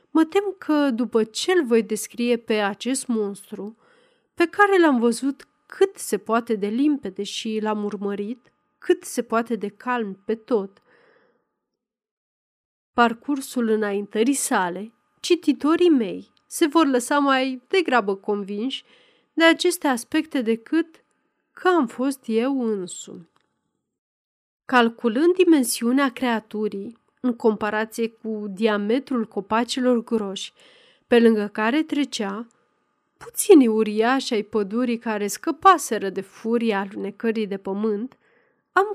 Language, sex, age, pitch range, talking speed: Romanian, female, 30-49, 215-285 Hz, 115 wpm